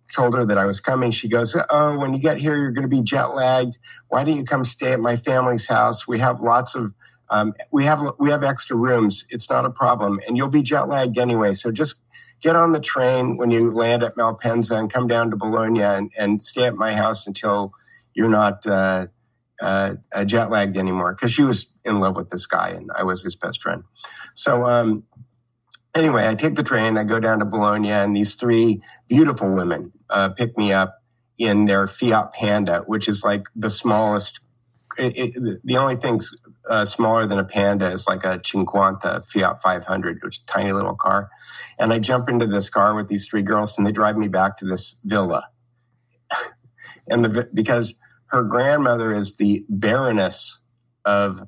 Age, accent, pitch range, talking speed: 50-69, American, 100-120 Hz, 195 wpm